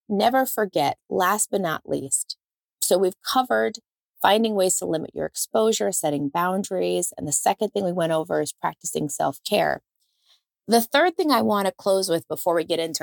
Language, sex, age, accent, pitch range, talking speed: English, female, 30-49, American, 165-220 Hz, 180 wpm